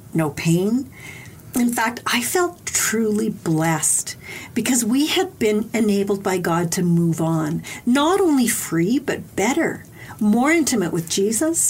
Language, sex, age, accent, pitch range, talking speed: English, female, 50-69, American, 175-225 Hz, 140 wpm